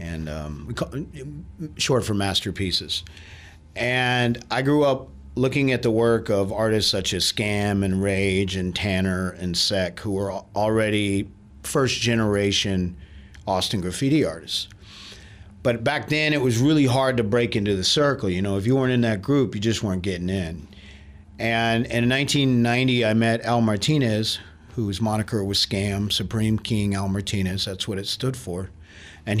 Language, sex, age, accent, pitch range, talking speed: English, male, 40-59, American, 95-120 Hz, 155 wpm